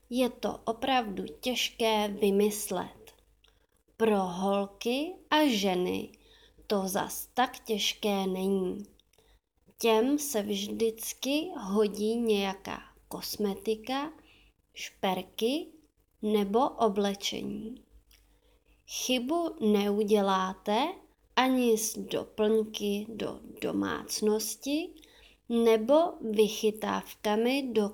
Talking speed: 70 wpm